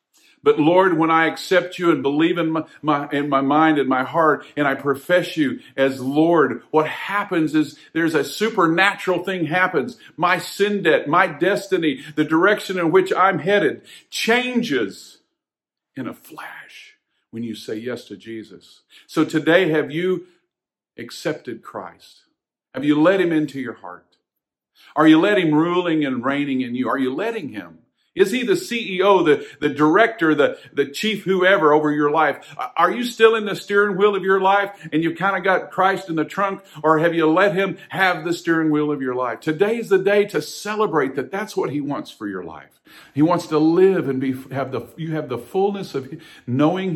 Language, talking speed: English, 190 wpm